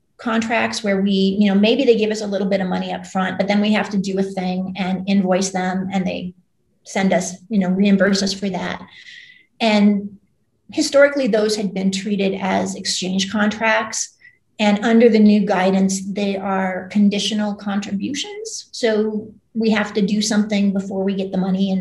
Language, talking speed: English, 185 wpm